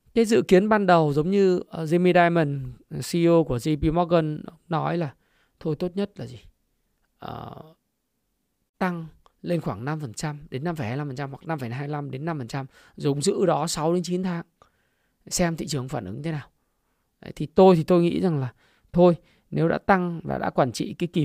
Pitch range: 145-175 Hz